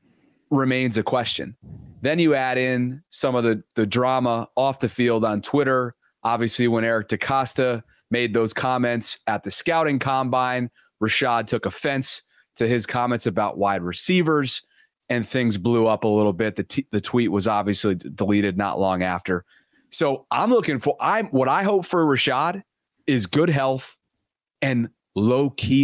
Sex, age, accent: male, 30-49, American